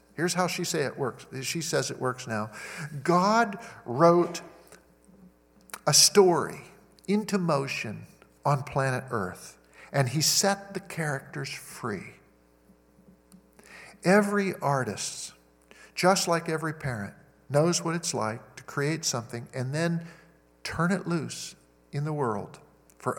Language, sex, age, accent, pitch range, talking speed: English, male, 50-69, American, 125-170 Hz, 125 wpm